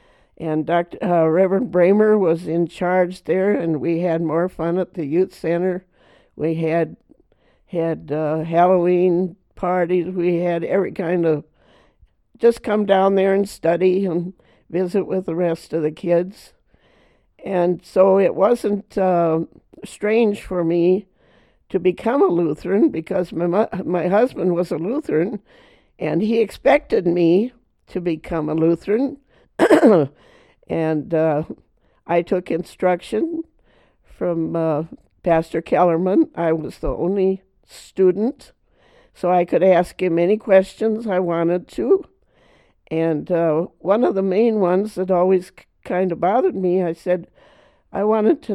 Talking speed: 140 wpm